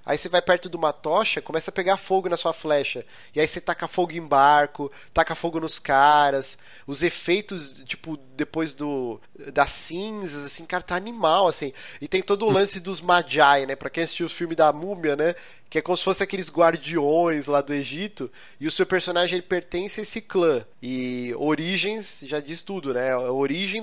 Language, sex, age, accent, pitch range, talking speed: Portuguese, male, 30-49, Brazilian, 155-200 Hz, 195 wpm